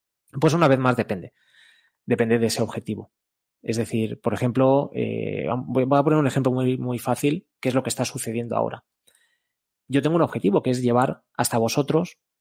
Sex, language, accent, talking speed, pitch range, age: male, Spanish, Spanish, 185 wpm, 115-140 Hz, 20-39